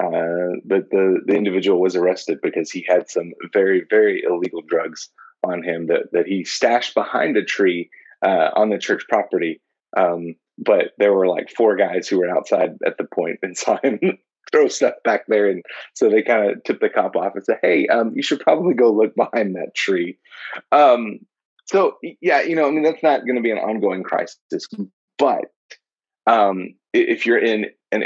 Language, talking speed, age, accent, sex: English, 195 wpm, 30-49, American, male